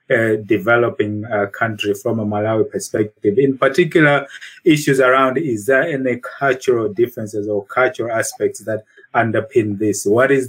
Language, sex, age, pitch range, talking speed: English, male, 30-49, 115-170 Hz, 135 wpm